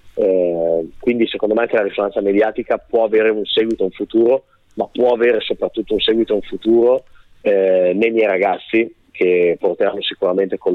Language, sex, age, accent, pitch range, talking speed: Italian, male, 30-49, native, 100-130 Hz, 175 wpm